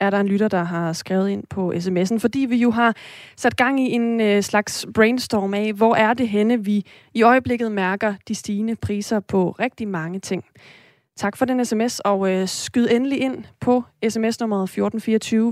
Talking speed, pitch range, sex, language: 180 wpm, 195-235 Hz, female, Danish